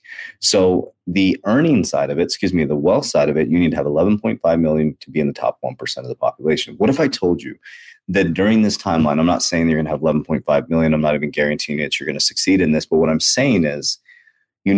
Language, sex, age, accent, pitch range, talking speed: English, male, 30-49, American, 75-95 Hz, 255 wpm